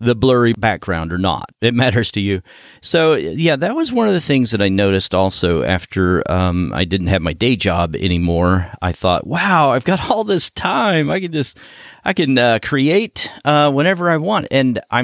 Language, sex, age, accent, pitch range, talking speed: English, male, 40-59, American, 95-130 Hz, 210 wpm